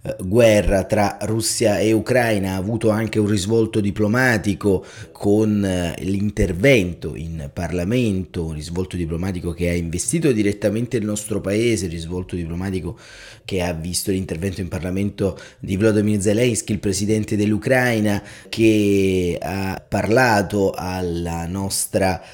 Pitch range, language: 95-115 Hz, Italian